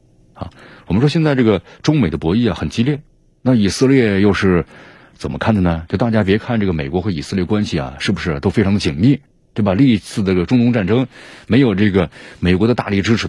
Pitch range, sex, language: 85-115 Hz, male, Chinese